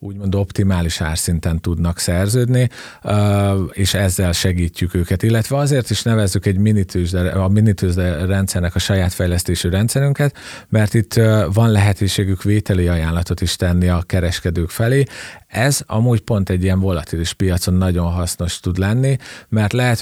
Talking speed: 140 wpm